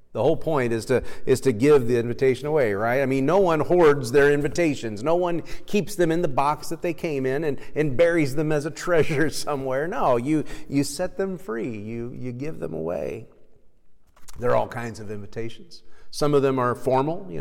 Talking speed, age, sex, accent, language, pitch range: 210 wpm, 40-59, male, American, English, 110-155 Hz